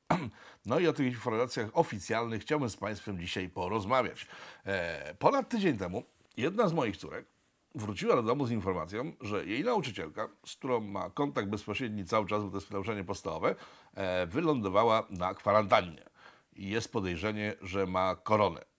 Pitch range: 90-110 Hz